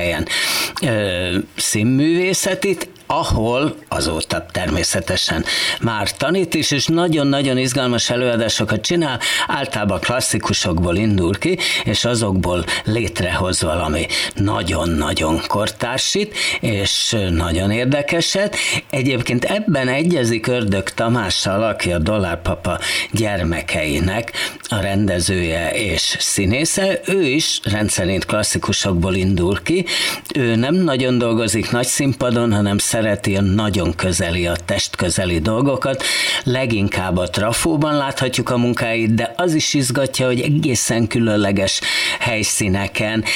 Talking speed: 100 wpm